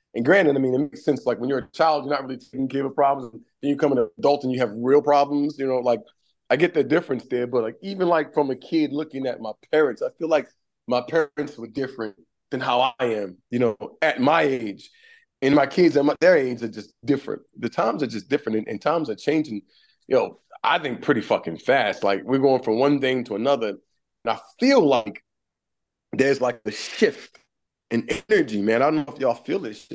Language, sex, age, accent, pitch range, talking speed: English, male, 30-49, American, 120-145 Hz, 235 wpm